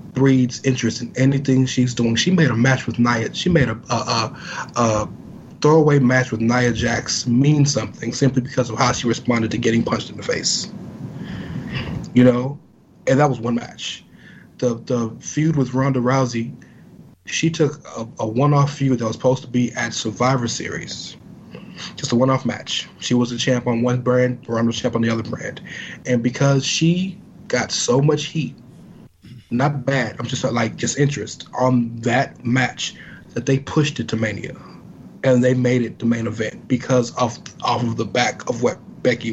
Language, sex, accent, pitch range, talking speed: English, male, American, 120-135 Hz, 190 wpm